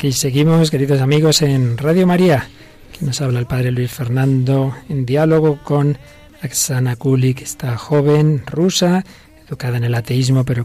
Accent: Spanish